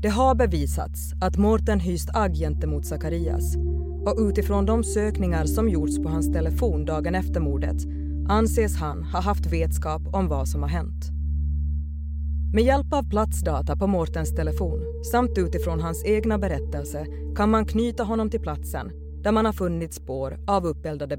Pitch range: 75-80 Hz